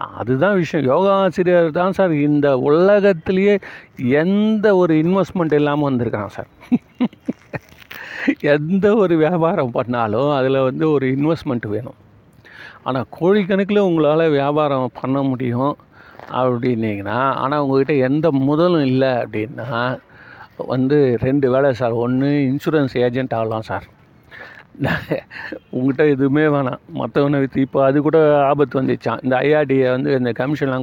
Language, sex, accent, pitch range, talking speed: Tamil, male, native, 125-160 Hz, 115 wpm